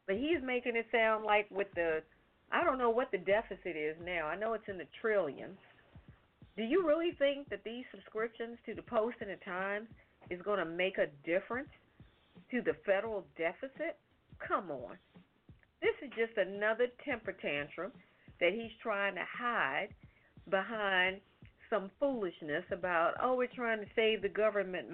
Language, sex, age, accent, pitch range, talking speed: English, female, 50-69, American, 195-255 Hz, 165 wpm